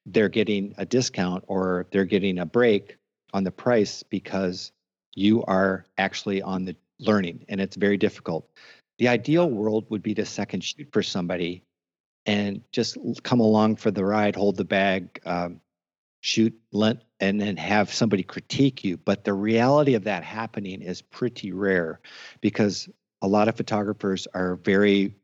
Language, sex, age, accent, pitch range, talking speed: English, male, 50-69, American, 90-105 Hz, 160 wpm